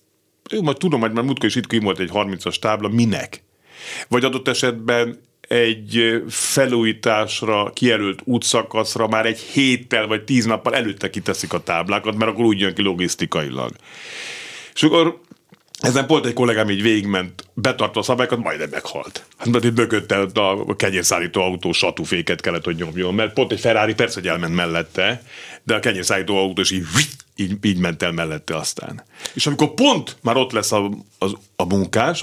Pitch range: 100-130 Hz